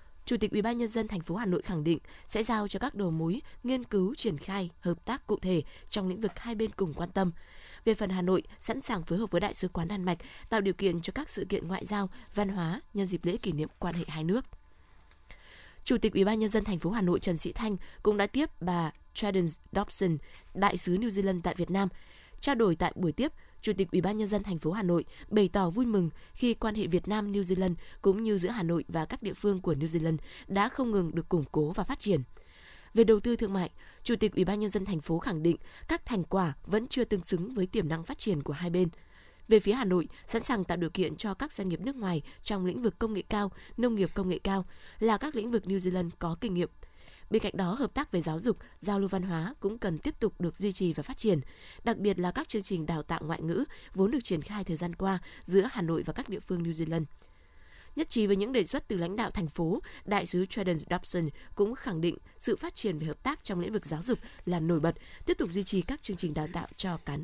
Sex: female